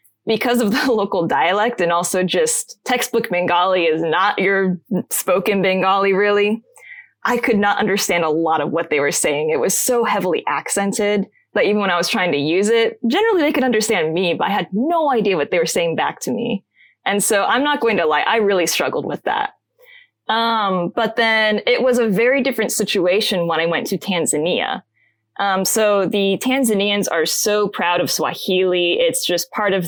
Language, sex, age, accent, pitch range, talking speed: English, female, 20-39, American, 175-230 Hz, 195 wpm